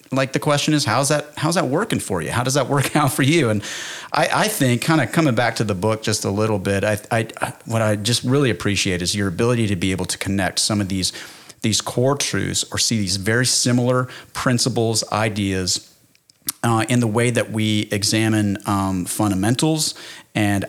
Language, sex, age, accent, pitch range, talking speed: English, male, 40-59, American, 105-125 Hz, 205 wpm